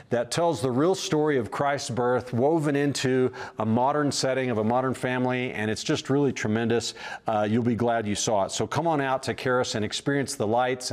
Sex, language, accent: male, English, American